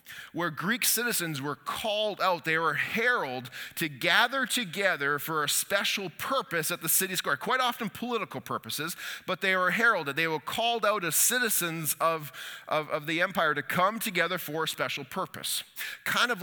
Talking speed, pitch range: 175 wpm, 145-190 Hz